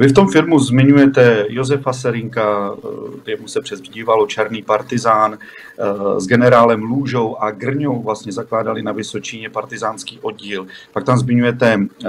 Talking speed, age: 130 wpm, 40-59